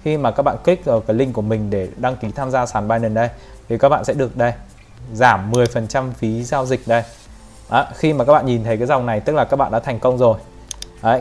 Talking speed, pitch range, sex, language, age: 260 wpm, 110-135 Hz, male, Vietnamese, 20-39